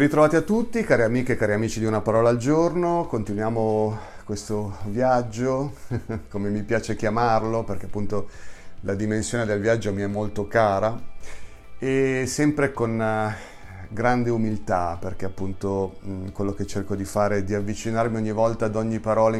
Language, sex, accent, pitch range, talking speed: Italian, male, native, 100-115 Hz, 155 wpm